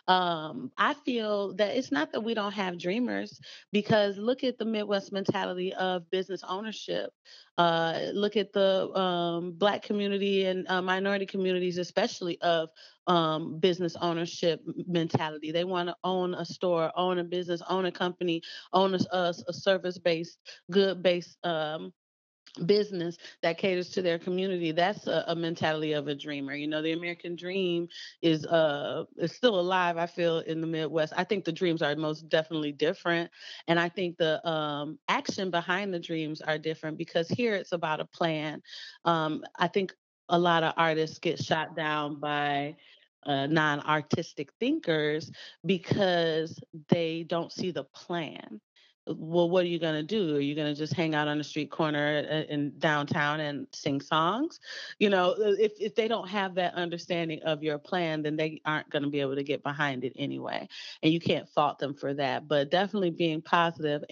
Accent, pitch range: American, 155-185 Hz